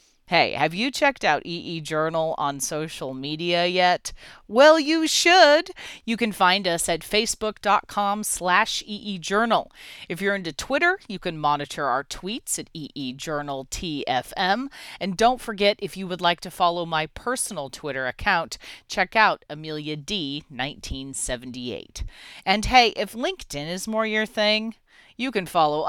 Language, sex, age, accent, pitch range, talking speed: English, female, 40-59, American, 150-220 Hz, 155 wpm